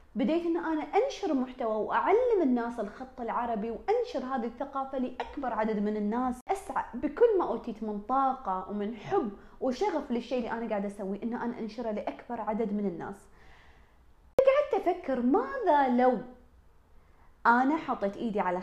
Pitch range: 235-335 Hz